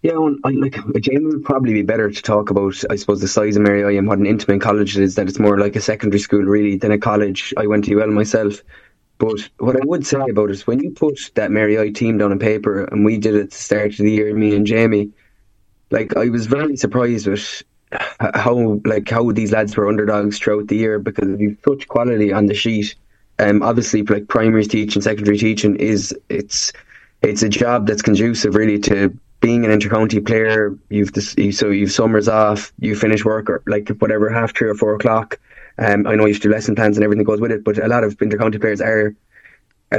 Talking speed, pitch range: 235 wpm, 105-110 Hz